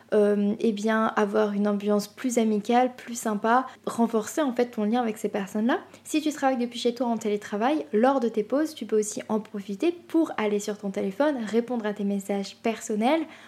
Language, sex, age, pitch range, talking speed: French, female, 20-39, 215-265 Hz, 205 wpm